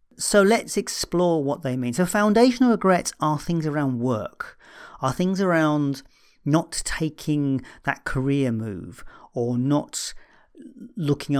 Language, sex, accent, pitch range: English, male, British, 125-160 Hz